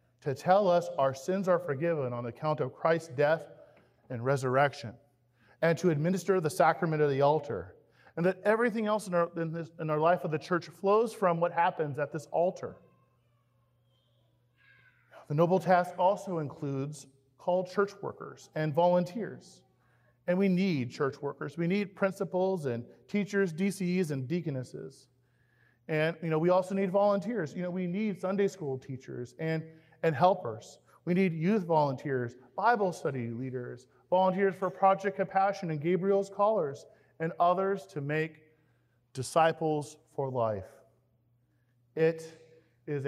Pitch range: 135-185 Hz